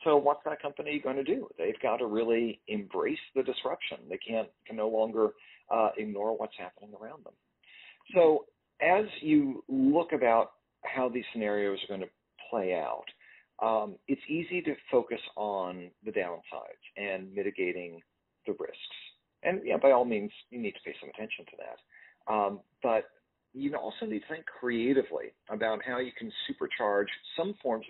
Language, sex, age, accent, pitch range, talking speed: English, male, 50-69, American, 110-160 Hz, 170 wpm